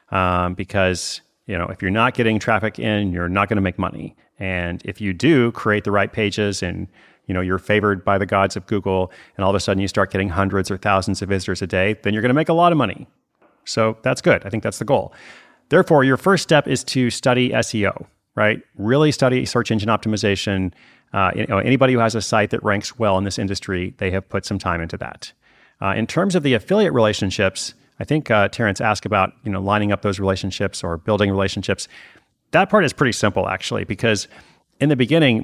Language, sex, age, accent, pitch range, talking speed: English, male, 30-49, American, 95-115 Hz, 225 wpm